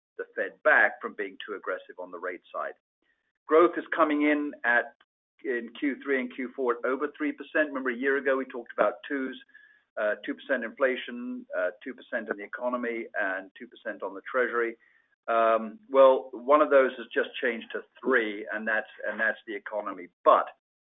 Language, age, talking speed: English, 50-69, 175 wpm